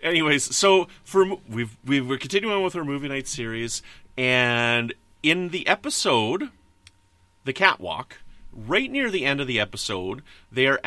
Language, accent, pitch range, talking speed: English, American, 100-140 Hz, 145 wpm